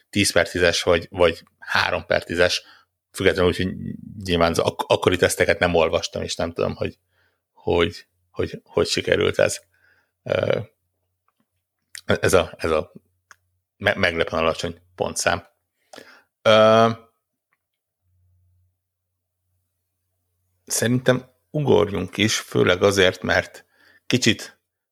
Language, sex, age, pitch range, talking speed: Hungarian, male, 60-79, 90-100 Hz, 95 wpm